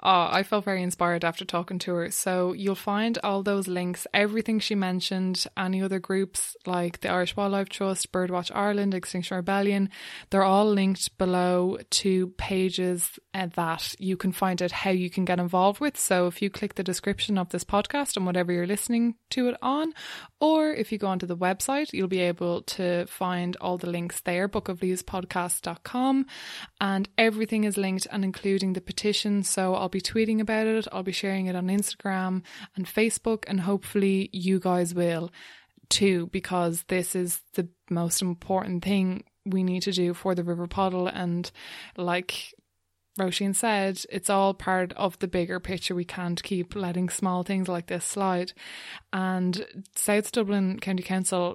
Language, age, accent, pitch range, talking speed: English, 20-39, Irish, 180-200 Hz, 170 wpm